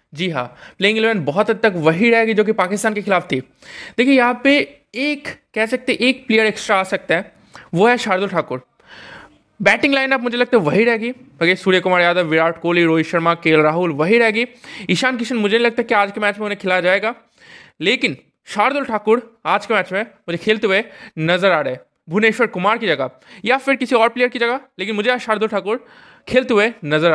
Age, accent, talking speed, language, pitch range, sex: 20-39, native, 210 wpm, Hindi, 185-245 Hz, male